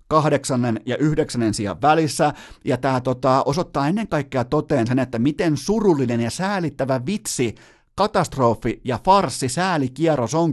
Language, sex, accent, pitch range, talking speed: Finnish, male, native, 130-170 Hz, 135 wpm